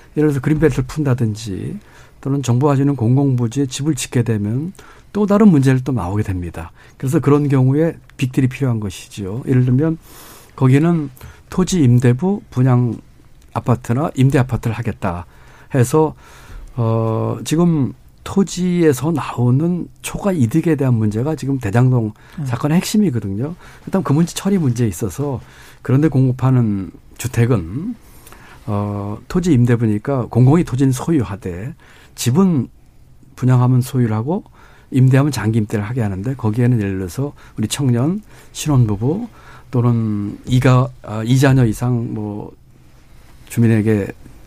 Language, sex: Korean, male